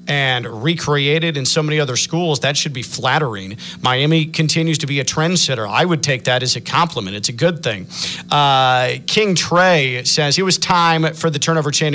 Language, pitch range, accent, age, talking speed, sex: English, 125-165 Hz, American, 40-59, 195 wpm, male